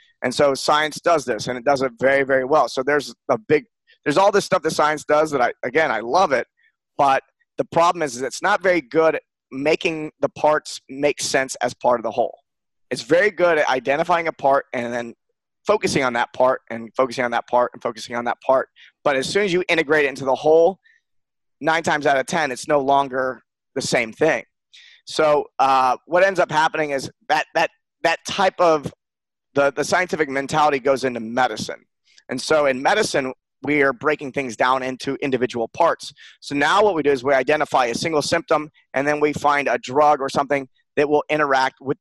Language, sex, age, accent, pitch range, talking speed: English, male, 30-49, American, 130-165 Hz, 210 wpm